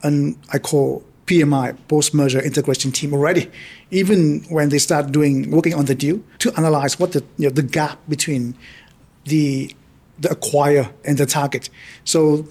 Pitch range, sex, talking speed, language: 135-160 Hz, male, 160 wpm, English